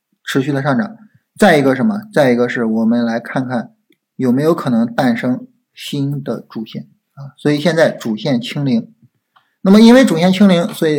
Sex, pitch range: male, 130-205 Hz